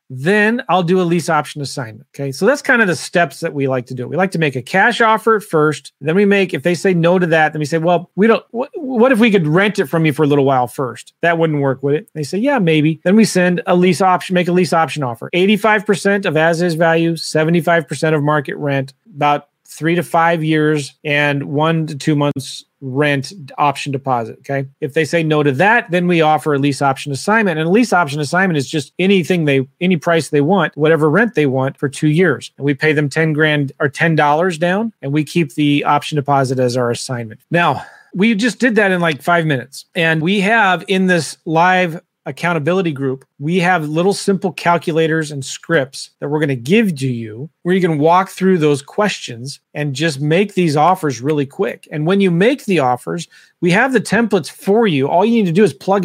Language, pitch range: English, 145-185 Hz